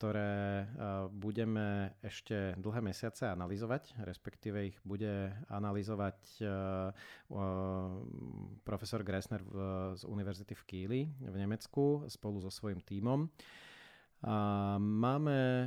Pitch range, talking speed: 100-115 Hz, 90 wpm